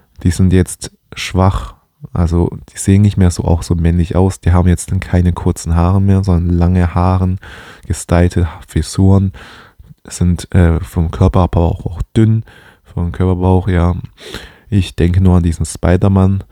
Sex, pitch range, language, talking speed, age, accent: male, 85-95 Hz, German, 165 wpm, 20-39, German